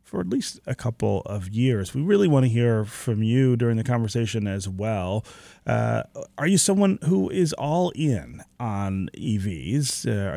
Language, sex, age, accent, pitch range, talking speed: English, male, 30-49, American, 105-140 Hz, 175 wpm